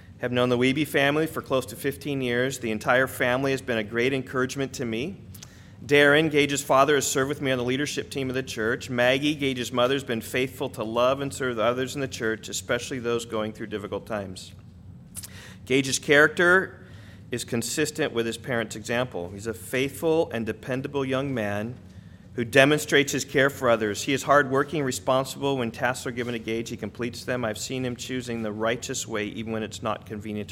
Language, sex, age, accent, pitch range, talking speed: English, male, 40-59, American, 105-135 Hz, 195 wpm